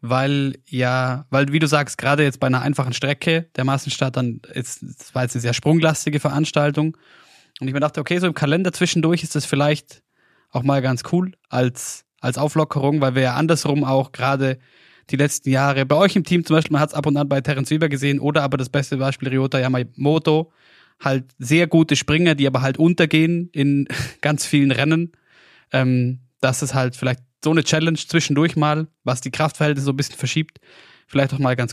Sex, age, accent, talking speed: male, 20-39, German, 200 wpm